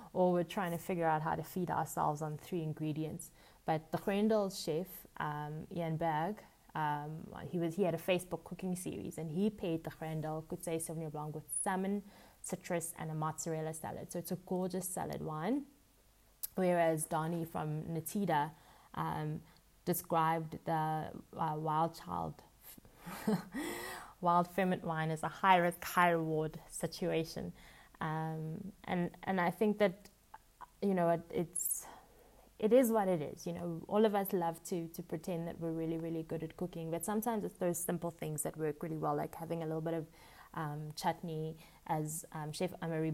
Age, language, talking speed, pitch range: 20-39, English, 170 wpm, 160-185 Hz